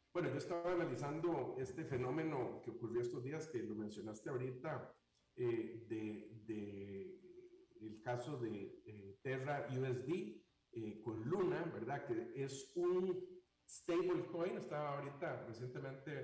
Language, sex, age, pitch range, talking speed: Spanish, male, 50-69, 120-175 Hz, 125 wpm